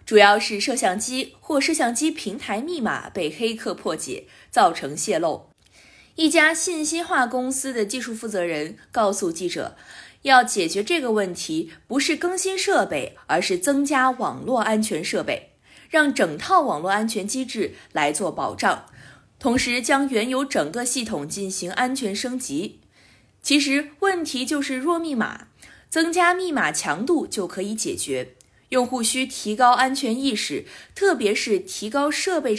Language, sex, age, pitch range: Chinese, female, 20-39, 220-320 Hz